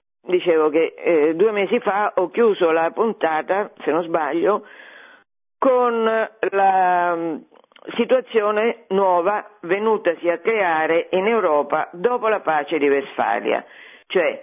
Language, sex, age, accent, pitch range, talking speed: Italian, female, 50-69, native, 175-235 Hz, 115 wpm